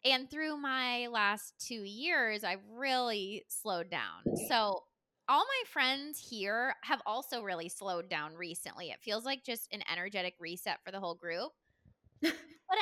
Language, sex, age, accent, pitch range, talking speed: English, female, 20-39, American, 190-255 Hz, 155 wpm